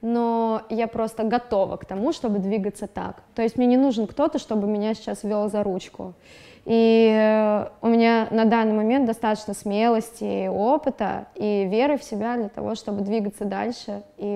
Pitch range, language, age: 205-240 Hz, Russian, 20-39